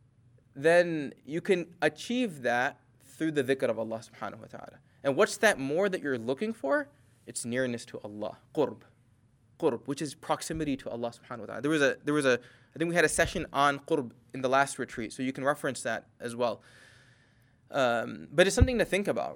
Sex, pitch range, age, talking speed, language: male, 125-155 Hz, 20-39, 200 wpm, English